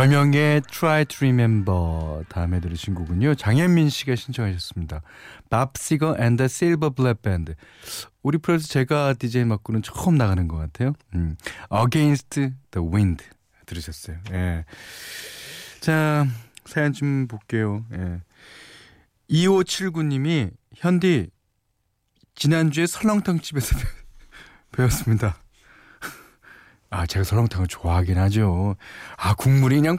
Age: 40-59